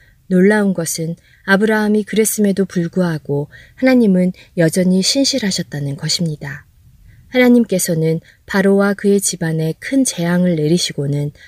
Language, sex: Korean, female